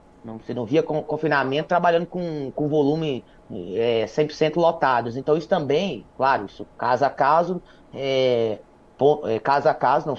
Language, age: Portuguese, 20-39